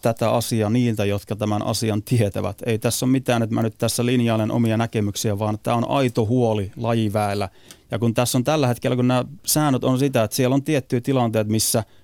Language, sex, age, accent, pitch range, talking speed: Finnish, male, 30-49, native, 105-125 Hz, 205 wpm